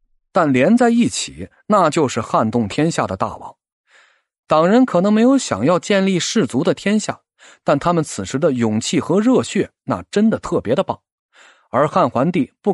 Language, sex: Chinese, male